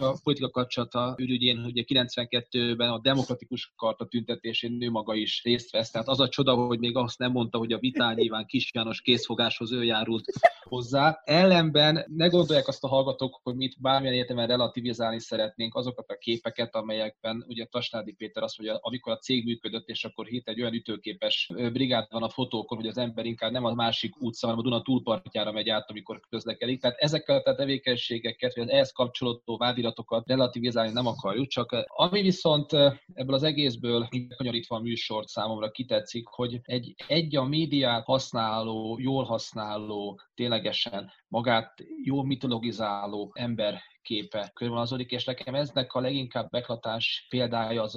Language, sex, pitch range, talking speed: Hungarian, male, 110-130 Hz, 165 wpm